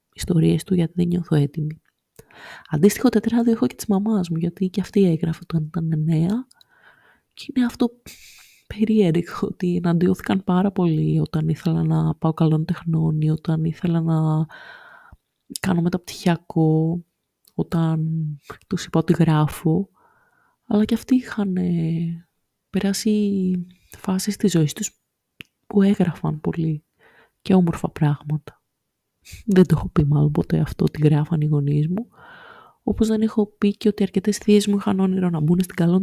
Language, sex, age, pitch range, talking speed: Greek, female, 20-39, 160-210 Hz, 150 wpm